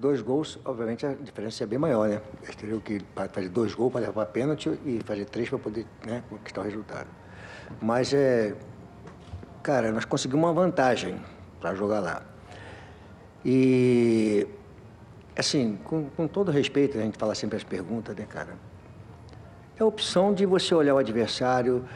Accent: Brazilian